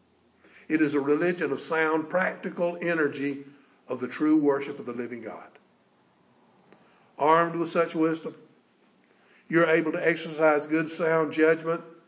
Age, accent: 60-79, American